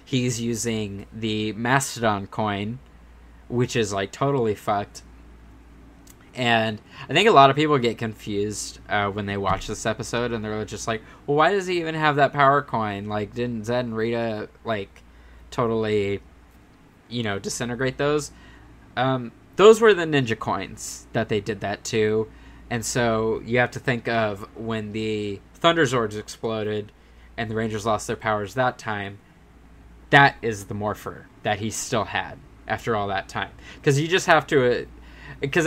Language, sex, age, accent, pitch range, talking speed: English, male, 20-39, American, 105-125 Hz, 165 wpm